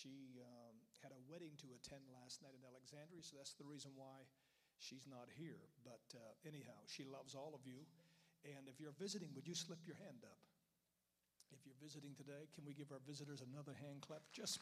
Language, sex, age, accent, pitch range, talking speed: English, male, 50-69, American, 135-170 Hz, 205 wpm